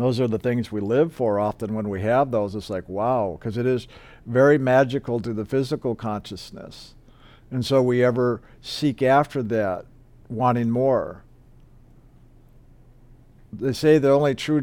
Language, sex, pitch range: English, male, 115-135 Hz